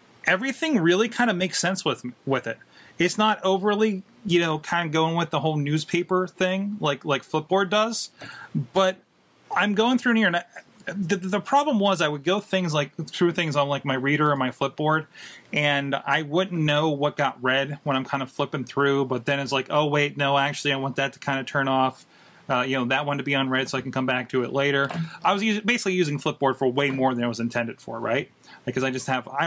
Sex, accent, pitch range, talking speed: male, American, 135-185 Hz, 235 wpm